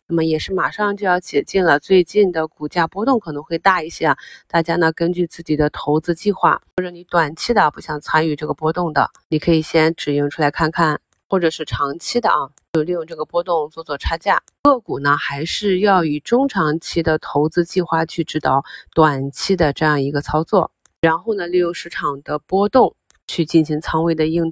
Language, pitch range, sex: Chinese, 155-180 Hz, female